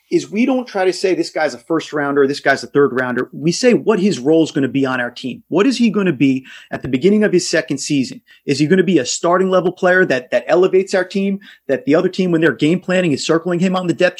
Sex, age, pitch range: male, 30-49, 140-190 Hz